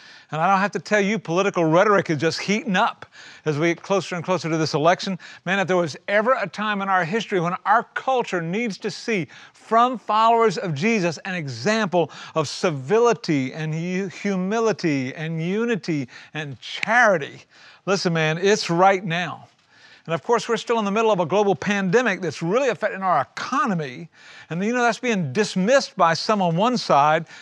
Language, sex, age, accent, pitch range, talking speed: English, male, 50-69, American, 165-215 Hz, 185 wpm